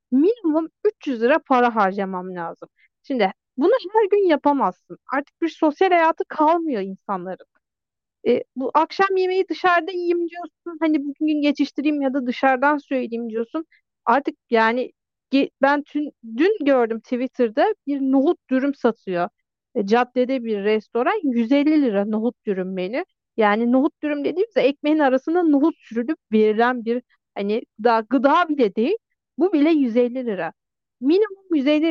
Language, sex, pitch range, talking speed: Turkish, female, 240-315 Hz, 140 wpm